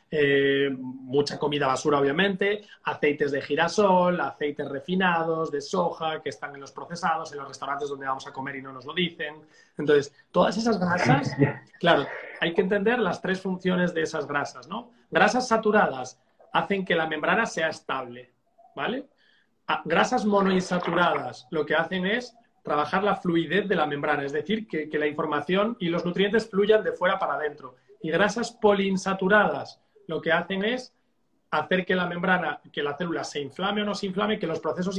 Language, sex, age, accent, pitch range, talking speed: Spanish, male, 40-59, Spanish, 145-200 Hz, 175 wpm